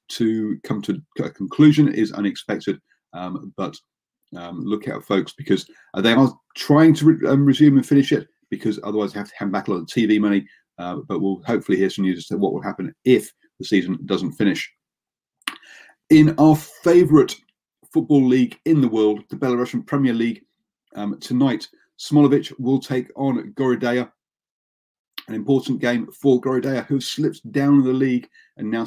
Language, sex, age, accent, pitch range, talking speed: English, male, 40-59, British, 105-140 Hz, 175 wpm